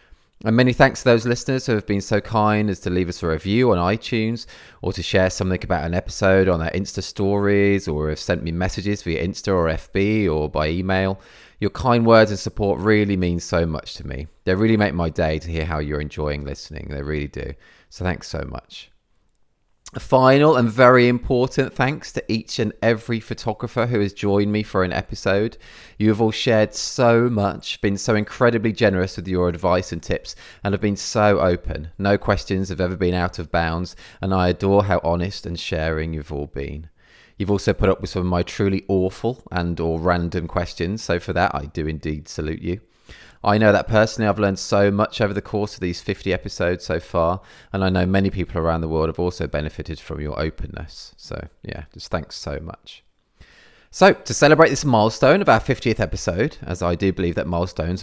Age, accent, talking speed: 20-39, British, 210 wpm